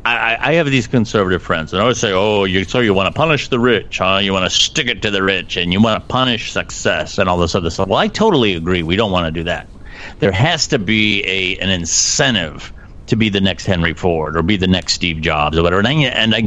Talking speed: 270 wpm